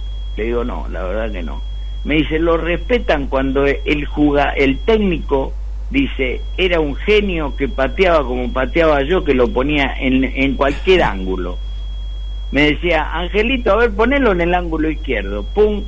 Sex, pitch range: male, 115-175 Hz